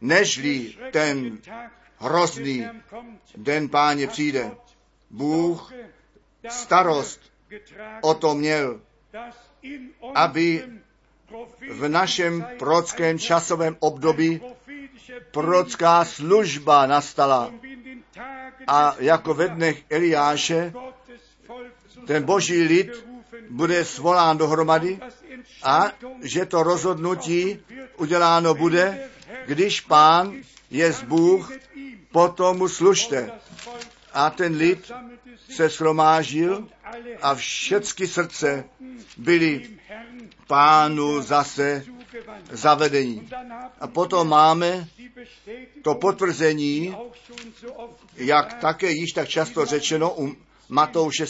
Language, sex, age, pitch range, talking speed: Czech, male, 50-69, 155-235 Hz, 80 wpm